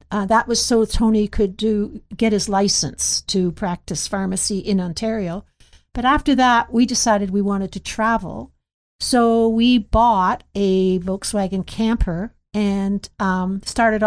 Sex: female